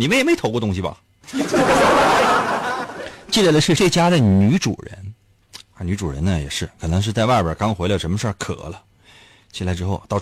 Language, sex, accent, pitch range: Chinese, male, native, 95-125 Hz